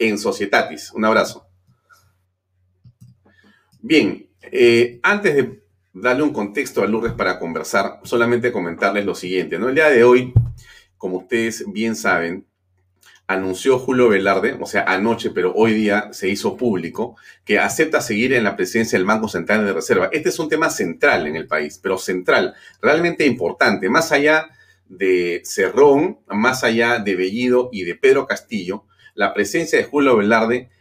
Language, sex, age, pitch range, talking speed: Spanish, male, 40-59, 95-130 Hz, 155 wpm